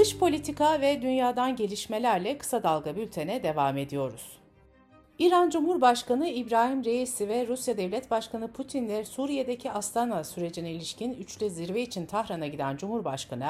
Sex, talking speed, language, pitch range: female, 130 wpm, Turkish, 160-245 Hz